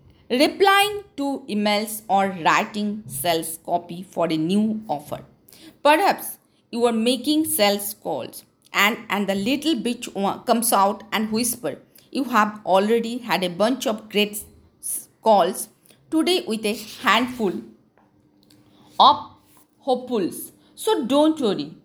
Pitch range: 200-290 Hz